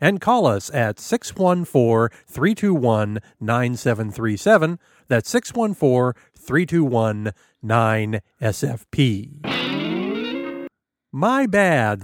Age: 40-59